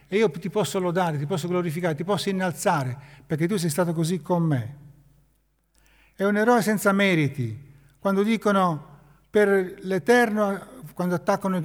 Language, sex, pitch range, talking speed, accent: Italian, male, 140-185 Hz, 150 wpm, native